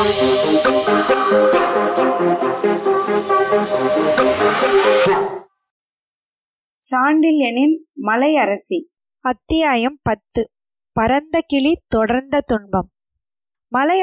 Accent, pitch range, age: native, 235-290 Hz, 20-39